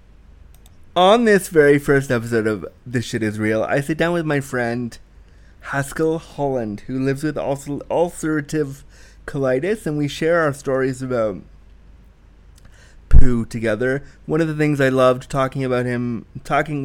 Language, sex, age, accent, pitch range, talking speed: English, male, 20-39, American, 125-155 Hz, 150 wpm